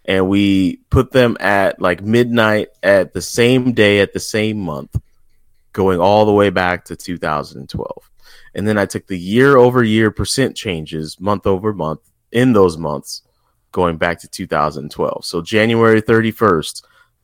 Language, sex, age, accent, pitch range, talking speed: English, male, 20-39, American, 85-120 Hz, 160 wpm